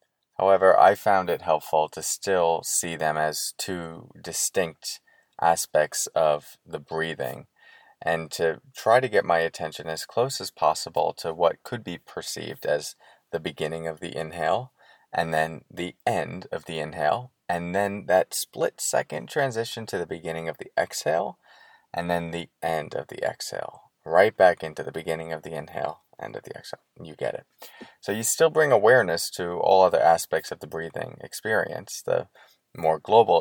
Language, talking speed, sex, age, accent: English, 170 wpm, male, 30-49, American